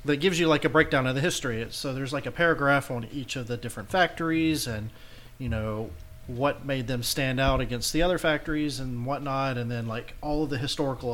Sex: male